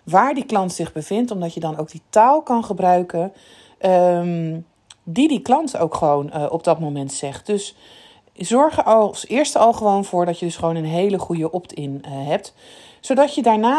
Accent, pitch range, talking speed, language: Dutch, 175-240 Hz, 185 wpm, Dutch